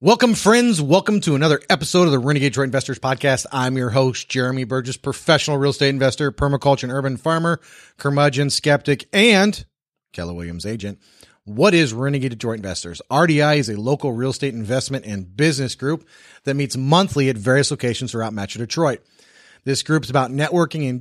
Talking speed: 175 wpm